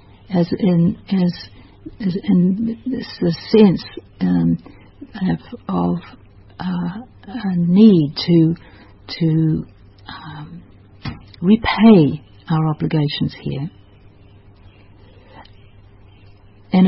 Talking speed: 80 wpm